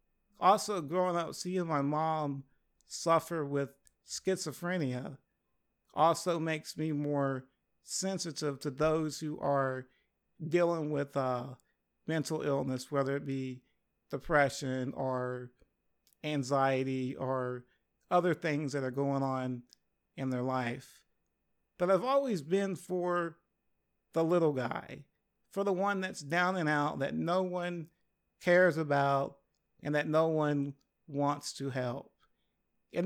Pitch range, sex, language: 135-180 Hz, male, English